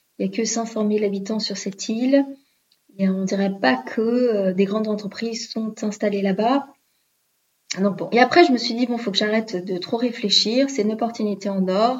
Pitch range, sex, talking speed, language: 195-230 Hz, female, 205 wpm, French